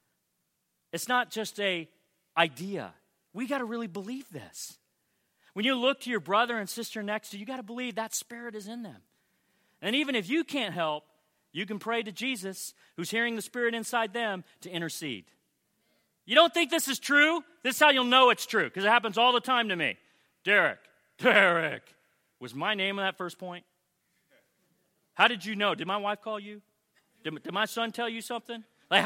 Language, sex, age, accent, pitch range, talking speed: English, male, 40-59, American, 200-275 Hz, 200 wpm